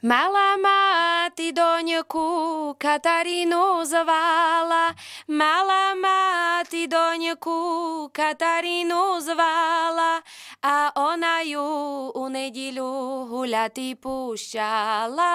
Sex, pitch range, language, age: female, 265-335 Hz, Slovak, 20-39